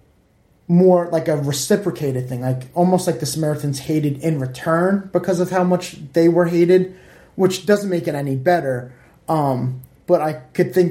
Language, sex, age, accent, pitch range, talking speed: English, male, 30-49, American, 130-170 Hz, 170 wpm